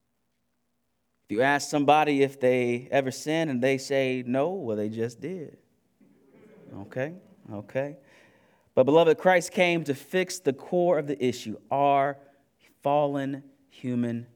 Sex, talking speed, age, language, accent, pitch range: male, 130 wpm, 20-39, English, American, 125-175 Hz